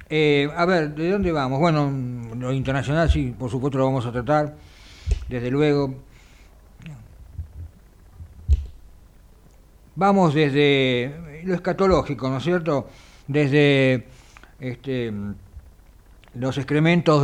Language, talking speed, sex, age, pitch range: Italian, 100 wpm, male, 50-69, 90-150 Hz